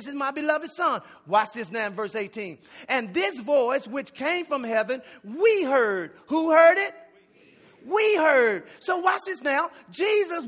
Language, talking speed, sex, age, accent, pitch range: English, 170 wpm, male, 40-59, American, 260-355 Hz